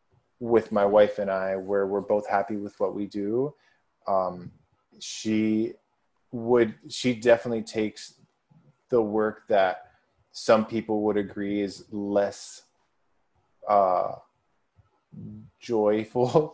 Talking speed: 110 wpm